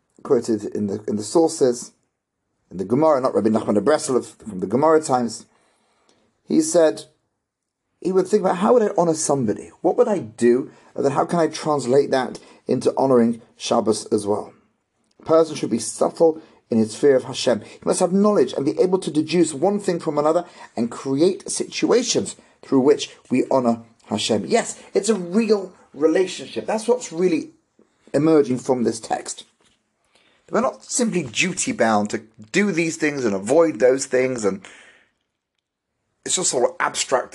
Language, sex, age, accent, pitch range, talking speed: English, male, 40-59, British, 115-175 Hz, 175 wpm